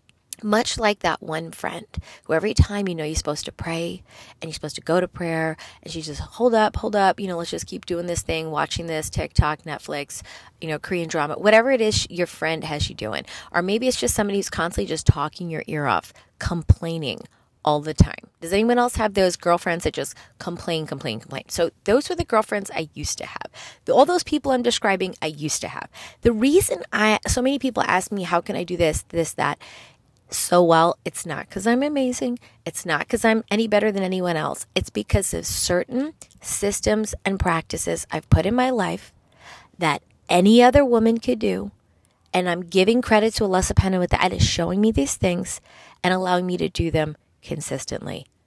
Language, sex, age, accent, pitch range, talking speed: English, female, 20-39, American, 150-210 Hz, 210 wpm